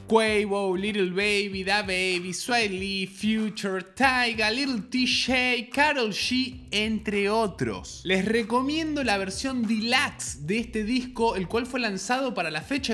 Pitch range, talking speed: 190-250 Hz, 135 wpm